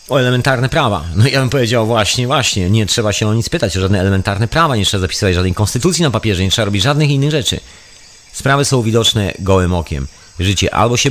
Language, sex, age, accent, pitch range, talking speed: Polish, male, 40-59, native, 95-120 Hz, 215 wpm